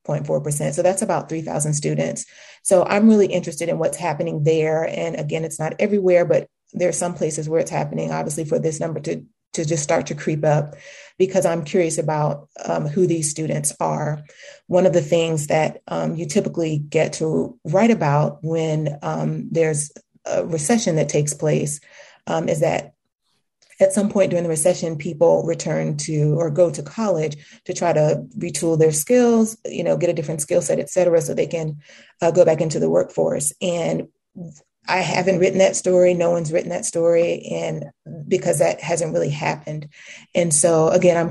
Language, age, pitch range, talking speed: English, 30-49, 150-180 Hz, 185 wpm